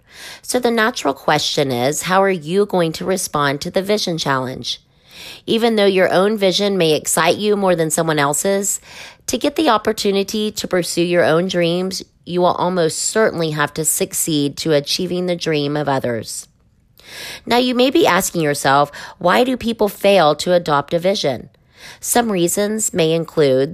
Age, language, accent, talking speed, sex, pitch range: 30-49, English, American, 170 wpm, female, 145-195 Hz